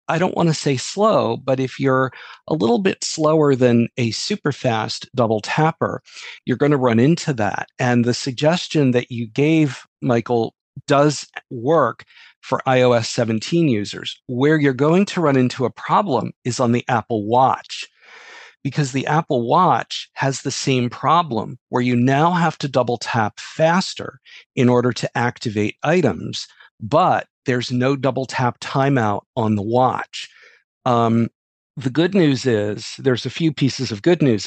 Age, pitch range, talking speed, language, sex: 50-69, 120-140 Hz, 160 wpm, English, male